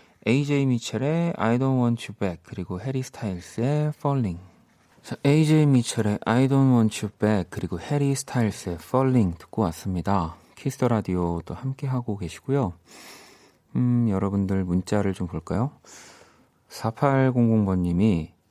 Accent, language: native, Korean